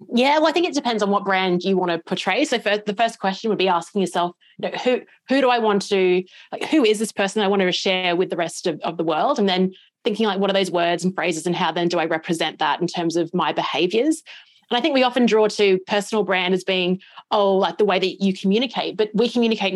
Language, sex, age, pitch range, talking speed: English, female, 30-49, 180-220 Hz, 270 wpm